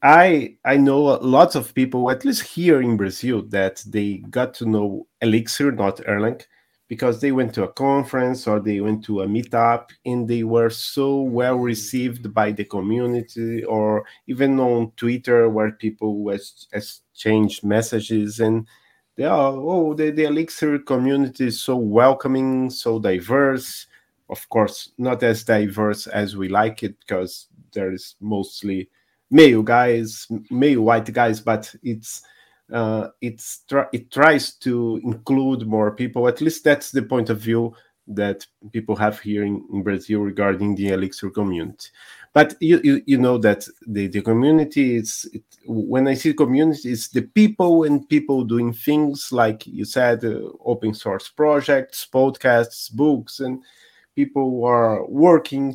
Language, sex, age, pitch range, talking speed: English, male, 30-49, 110-135 Hz, 155 wpm